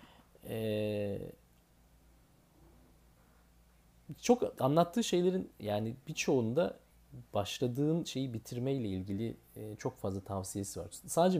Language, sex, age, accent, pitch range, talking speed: Turkish, male, 40-59, native, 95-120 Hz, 80 wpm